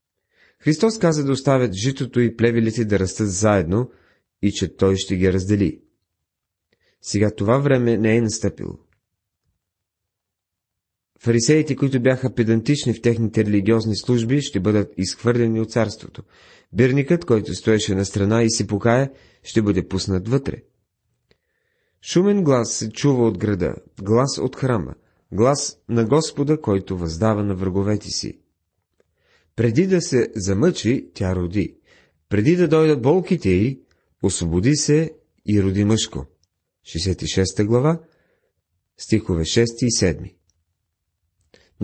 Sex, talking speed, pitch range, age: male, 125 wpm, 95-130 Hz, 30-49